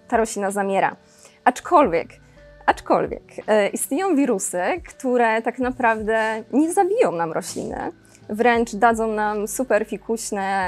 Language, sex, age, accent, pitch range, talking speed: Polish, female, 20-39, native, 195-255 Hz, 105 wpm